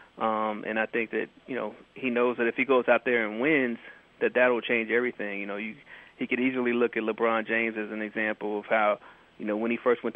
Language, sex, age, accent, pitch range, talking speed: English, male, 30-49, American, 110-125 Hz, 250 wpm